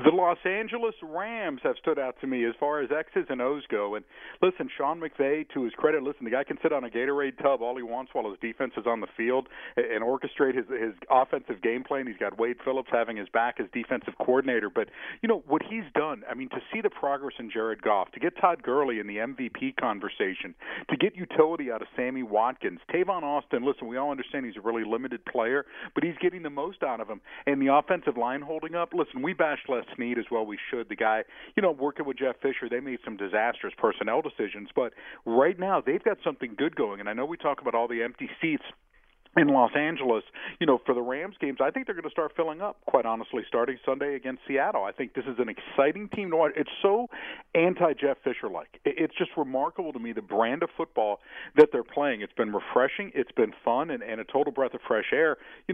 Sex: male